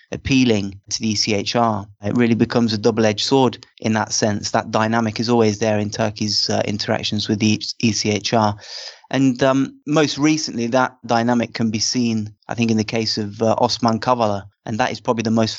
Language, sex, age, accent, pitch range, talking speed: English, male, 20-39, British, 105-120 Hz, 190 wpm